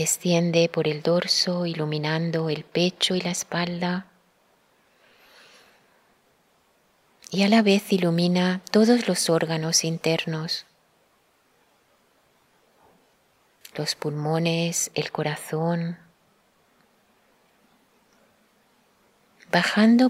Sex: female